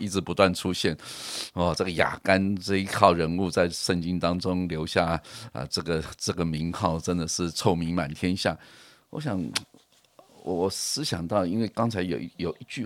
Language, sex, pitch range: Chinese, male, 85-115 Hz